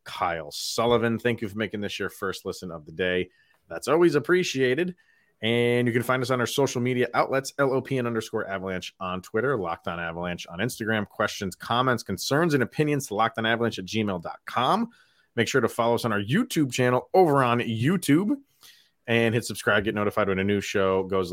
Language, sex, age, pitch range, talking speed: English, male, 30-49, 105-140 Hz, 195 wpm